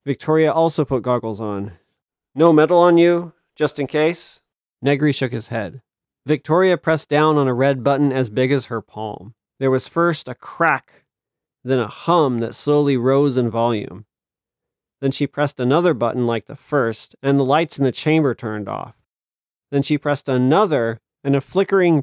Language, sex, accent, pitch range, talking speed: English, male, American, 120-155 Hz, 175 wpm